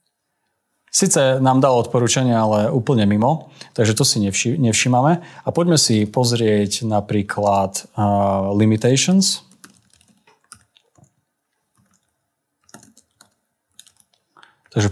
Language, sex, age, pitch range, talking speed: Slovak, male, 30-49, 110-145 Hz, 80 wpm